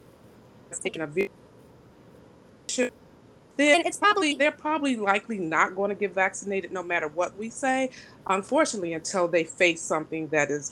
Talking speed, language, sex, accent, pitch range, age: 140 wpm, English, female, American, 165-220 Hz, 30-49